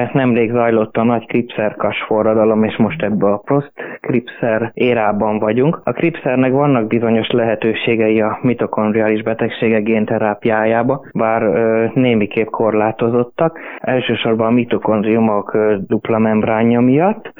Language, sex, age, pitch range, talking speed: Hungarian, male, 20-39, 110-125 Hz, 115 wpm